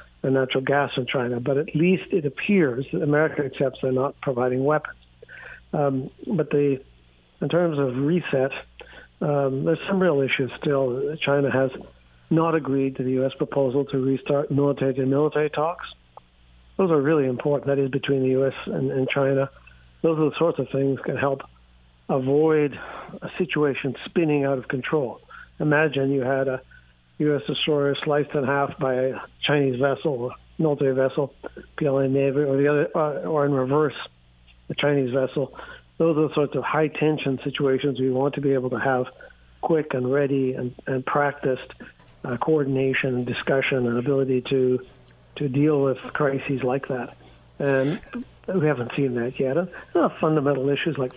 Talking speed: 170 wpm